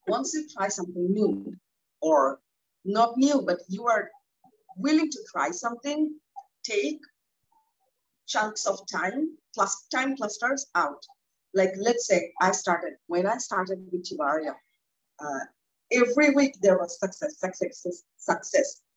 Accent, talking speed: Indian, 130 wpm